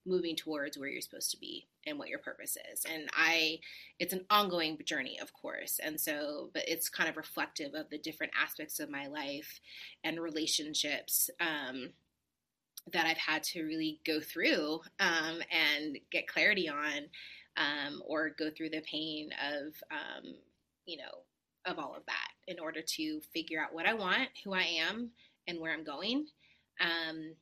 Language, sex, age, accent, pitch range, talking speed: English, female, 20-39, American, 160-200 Hz, 175 wpm